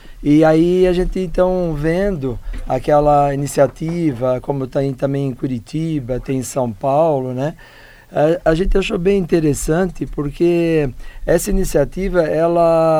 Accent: Brazilian